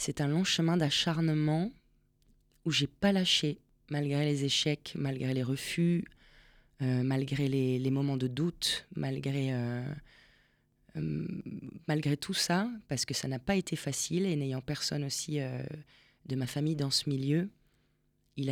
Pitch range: 130-150 Hz